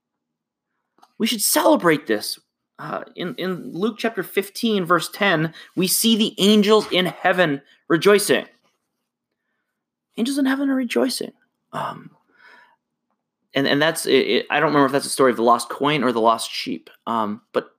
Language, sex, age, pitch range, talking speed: English, male, 30-49, 135-205 Hz, 160 wpm